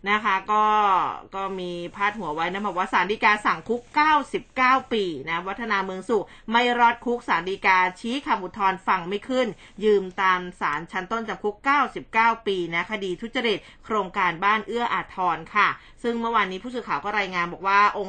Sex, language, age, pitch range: female, Thai, 20-39, 195-245 Hz